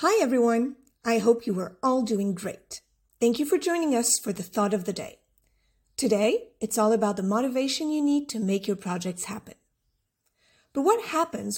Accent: American